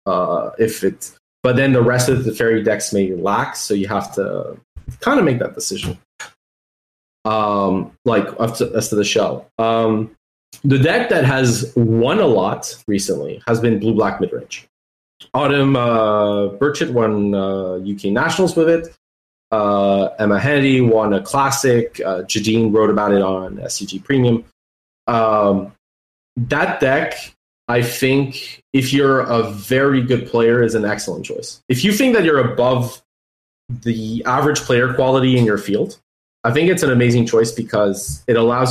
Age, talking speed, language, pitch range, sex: 20-39, 160 wpm, English, 105-130 Hz, male